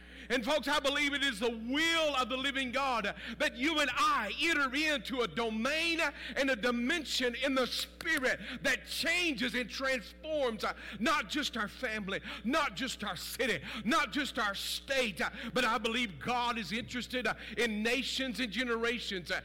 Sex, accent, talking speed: male, American, 175 wpm